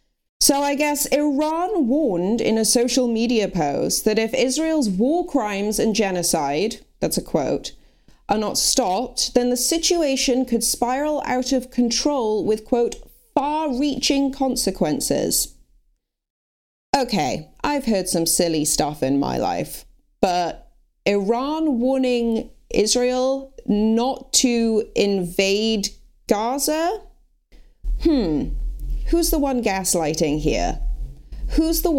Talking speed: 115 wpm